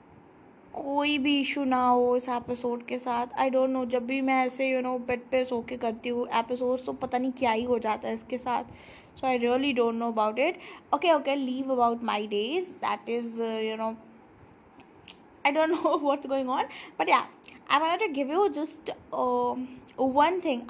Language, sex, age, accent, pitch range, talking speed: English, female, 10-29, Indian, 245-300 Hz, 150 wpm